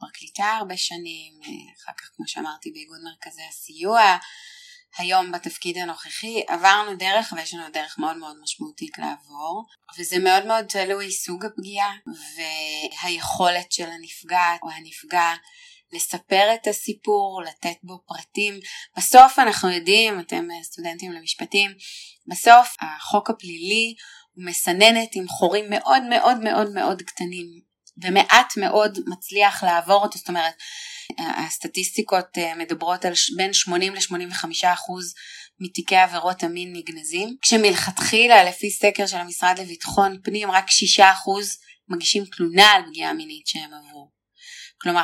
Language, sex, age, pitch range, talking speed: Hebrew, female, 20-39, 175-215 Hz, 125 wpm